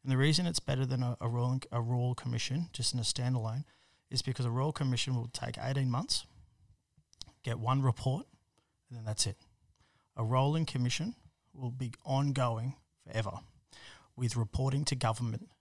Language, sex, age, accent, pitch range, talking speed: English, male, 30-49, Australian, 115-135 Hz, 165 wpm